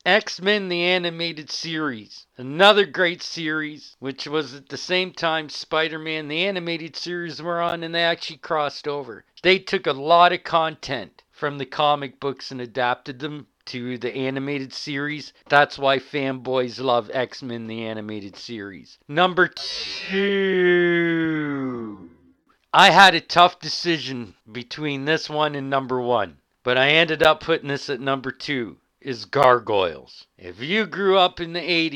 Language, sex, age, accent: English, male, 40-59, American